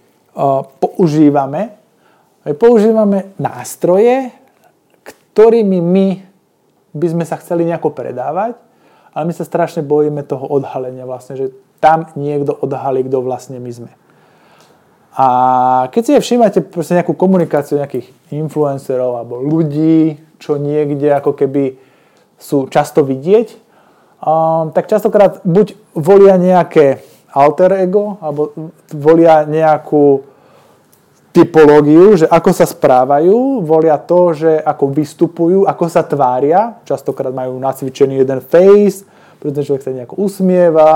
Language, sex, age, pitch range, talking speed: Slovak, male, 20-39, 140-190 Hz, 115 wpm